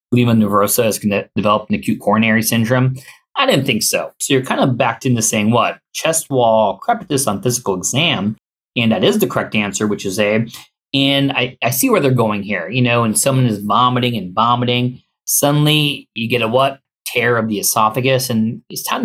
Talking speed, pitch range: 205 wpm, 110-135 Hz